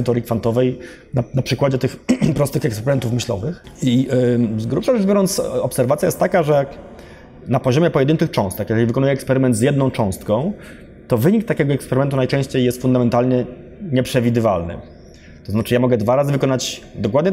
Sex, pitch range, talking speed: male, 110-130 Hz, 150 wpm